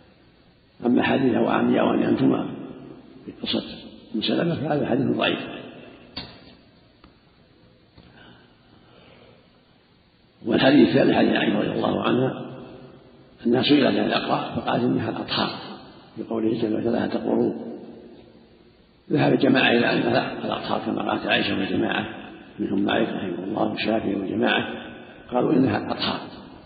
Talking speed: 110 wpm